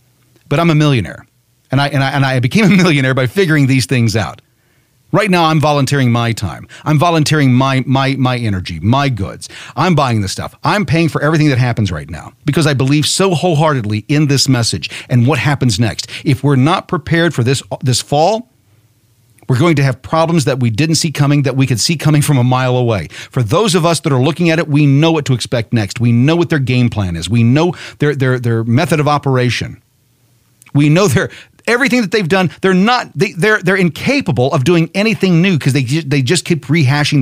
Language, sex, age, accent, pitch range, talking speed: English, male, 40-59, American, 120-155 Hz, 220 wpm